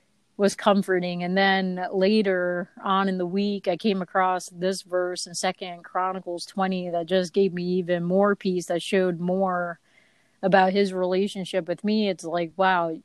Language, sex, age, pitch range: English, female, 30-49, 175-195 Hz